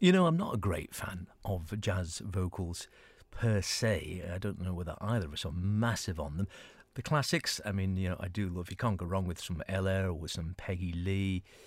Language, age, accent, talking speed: English, 50-69, British, 225 wpm